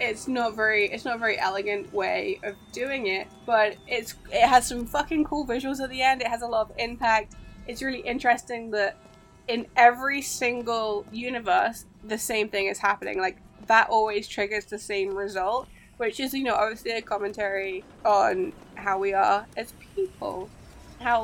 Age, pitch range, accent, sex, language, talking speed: 10-29, 205-240 Hz, British, female, English, 180 wpm